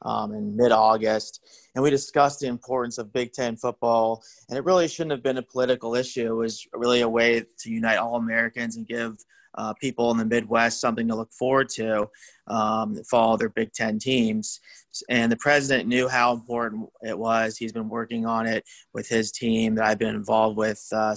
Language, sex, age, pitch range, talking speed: English, male, 20-39, 110-115 Hz, 205 wpm